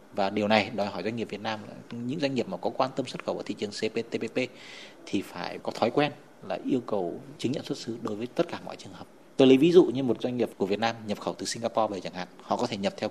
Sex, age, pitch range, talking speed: male, 20-39, 105-125 Hz, 300 wpm